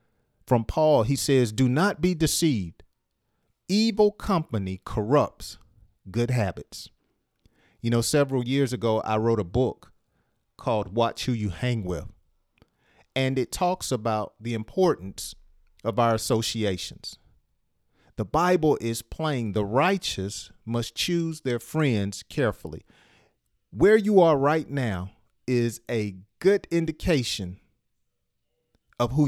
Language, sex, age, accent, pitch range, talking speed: English, male, 40-59, American, 110-155 Hz, 120 wpm